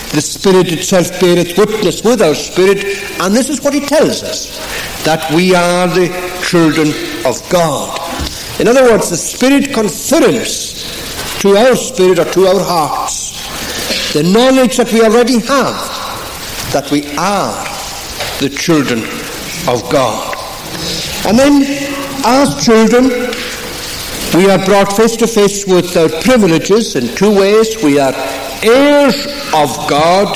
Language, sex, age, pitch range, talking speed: English, male, 60-79, 165-230 Hz, 135 wpm